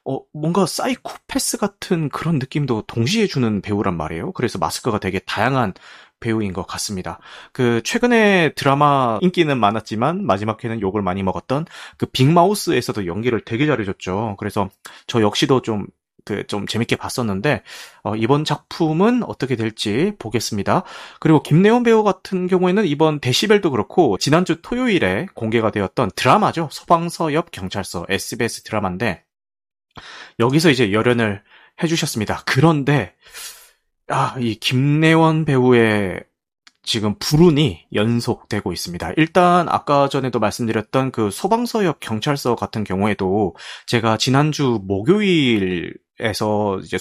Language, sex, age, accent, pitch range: Korean, male, 30-49, native, 105-165 Hz